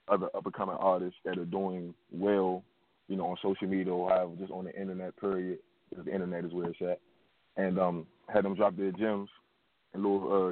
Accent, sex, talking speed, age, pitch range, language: American, male, 215 wpm, 20-39, 90-100 Hz, English